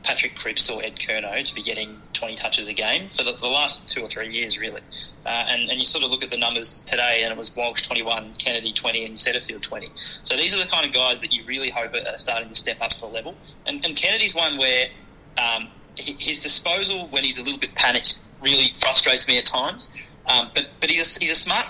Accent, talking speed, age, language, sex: Australian, 240 wpm, 20-39, English, male